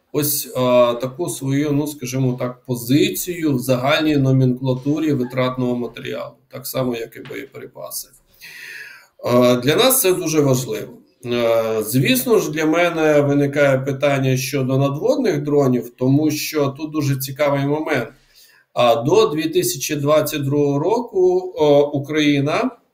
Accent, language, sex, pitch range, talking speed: native, Ukrainian, male, 130-165 Hz, 120 wpm